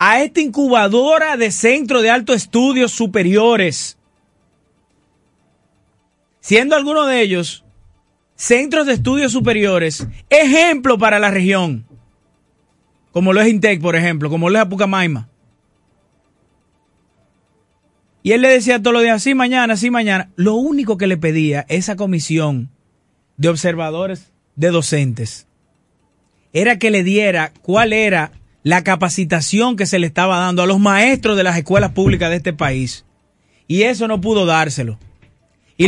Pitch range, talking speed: 165-230 Hz, 135 wpm